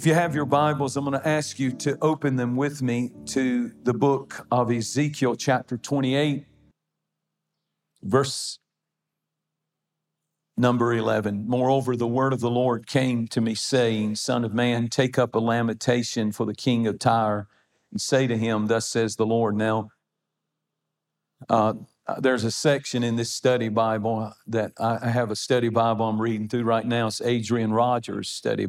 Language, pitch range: English, 115-135 Hz